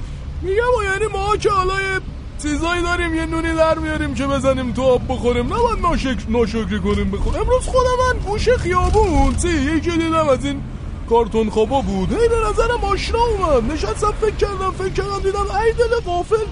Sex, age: male, 20-39